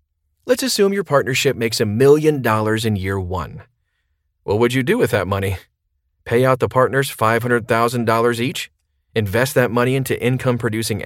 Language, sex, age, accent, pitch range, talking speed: English, male, 40-59, American, 100-130 Hz, 155 wpm